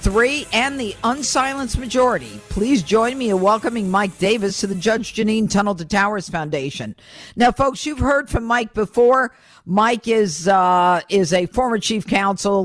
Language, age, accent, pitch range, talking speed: English, 50-69, American, 180-220 Hz, 165 wpm